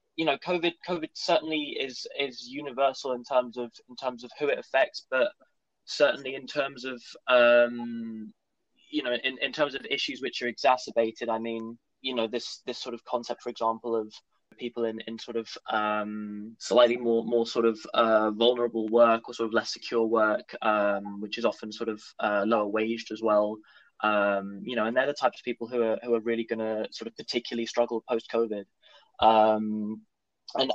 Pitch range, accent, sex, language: 110-120 Hz, British, male, English